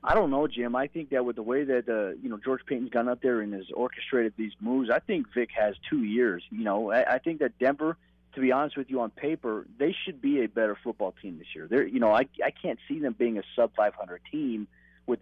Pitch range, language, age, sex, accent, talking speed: 110-135 Hz, English, 30-49, male, American, 260 wpm